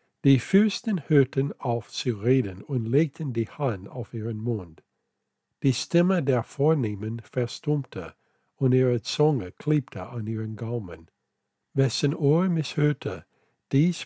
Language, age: German, 60-79